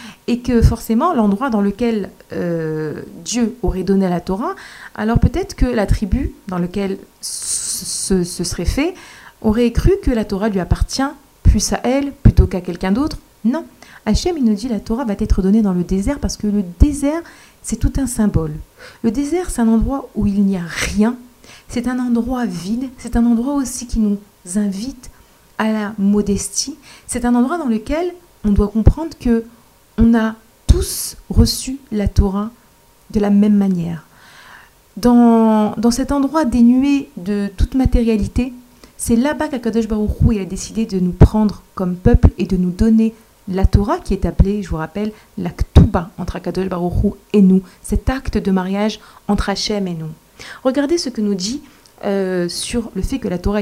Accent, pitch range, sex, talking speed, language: French, 195-245 Hz, female, 180 wpm, French